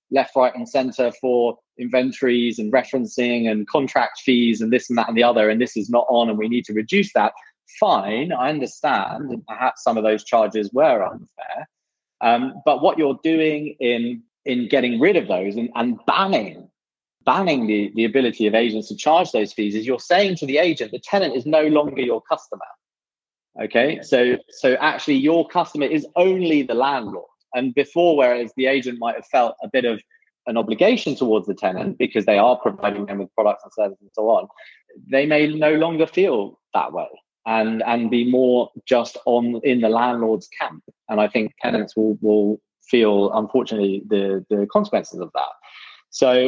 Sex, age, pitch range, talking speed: male, 20-39, 110-145 Hz, 185 wpm